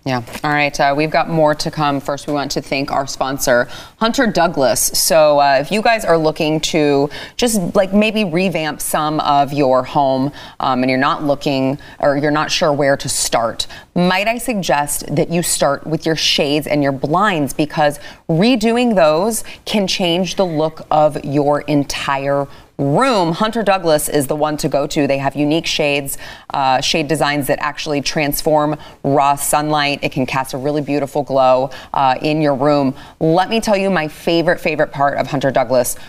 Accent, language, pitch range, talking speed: American, English, 145-190 Hz, 185 wpm